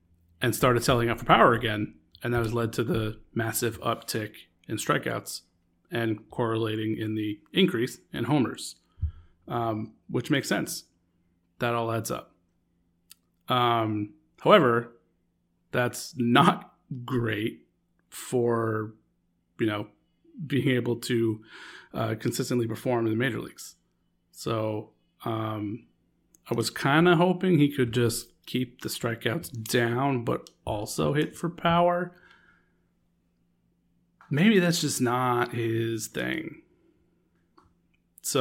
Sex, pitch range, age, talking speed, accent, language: male, 105-135 Hz, 30-49, 120 wpm, American, English